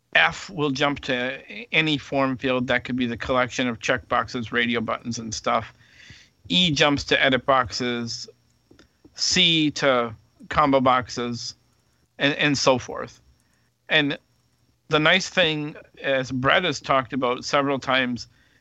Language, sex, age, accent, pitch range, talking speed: English, male, 50-69, American, 125-145 Hz, 135 wpm